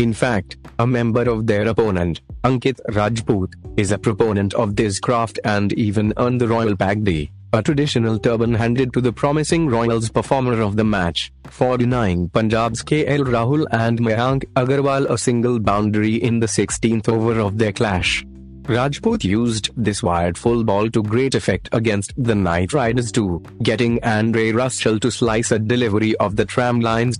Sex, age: male, 30-49